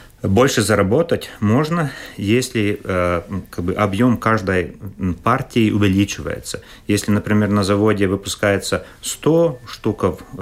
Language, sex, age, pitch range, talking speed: Russian, male, 30-49, 95-115 Hz, 90 wpm